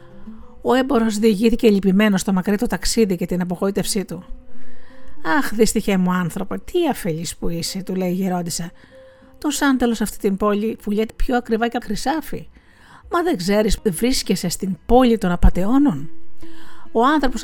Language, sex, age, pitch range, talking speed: Greek, female, 50-69, 185-240 Hz, 150 wpm